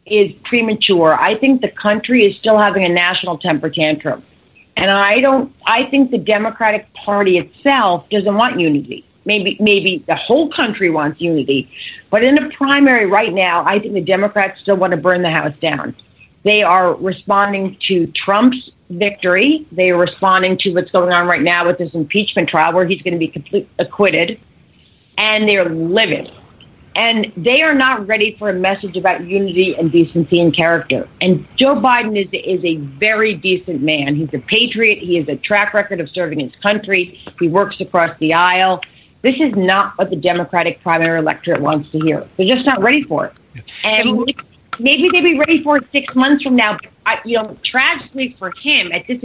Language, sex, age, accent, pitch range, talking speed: English, female, 40-59, American, 175-235 Hz, 190 wpm